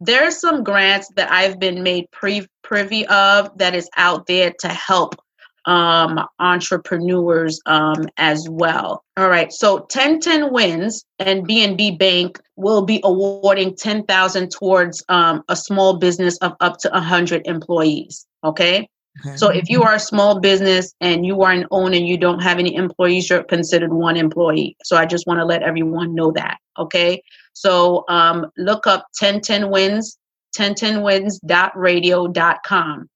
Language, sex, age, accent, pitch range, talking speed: English, female, 30-49, American, 175-200 Hz, 150 wpm